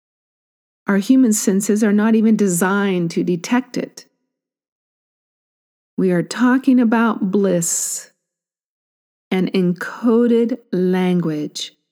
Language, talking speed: English, 90 wpm